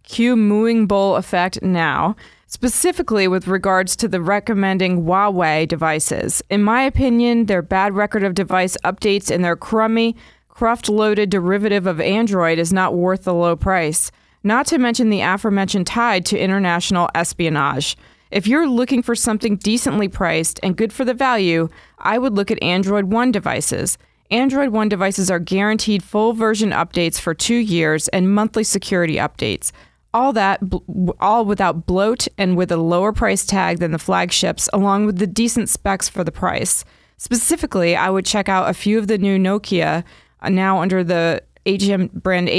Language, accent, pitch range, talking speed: English, American, 180-220 Hz, 165 wpm